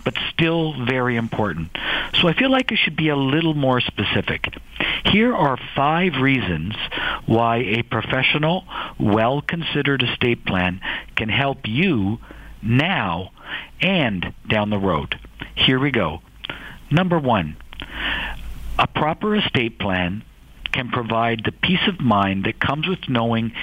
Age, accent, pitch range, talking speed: 50-69, American, 105-140 Hz, 130 wpm